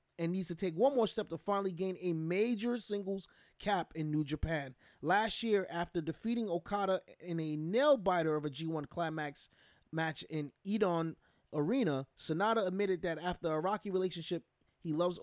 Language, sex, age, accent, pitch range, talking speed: English, male, 20-39, American, 155-205 Hz, 170 wpm